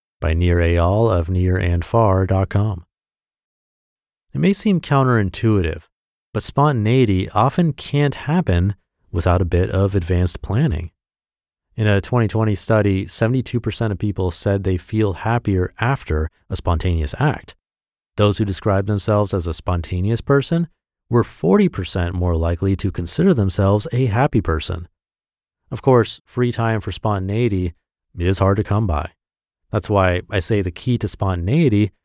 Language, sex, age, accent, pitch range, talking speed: English, male, 30-49, American, 90-120 Hz, 135 wpm